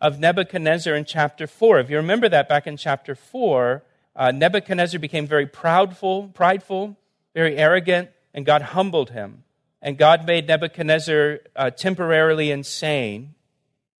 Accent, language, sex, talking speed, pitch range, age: American, English, male, 135 wpm, 130-155 Hz, 50-69